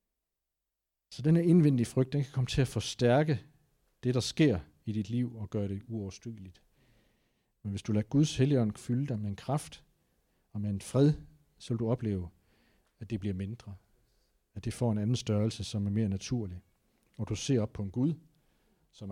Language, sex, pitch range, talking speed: Danish, male, 105-140 Hz, 190 wpm